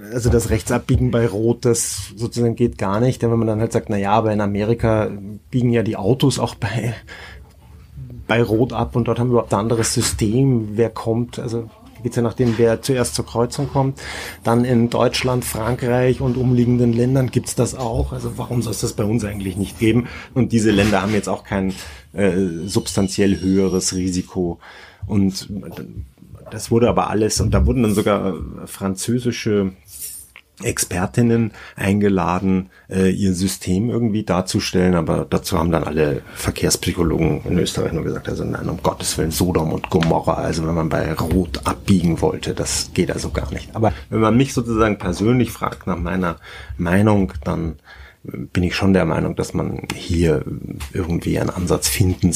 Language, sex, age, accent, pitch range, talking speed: German, male, 30-49, German, 95-120 Hz, 175 wpm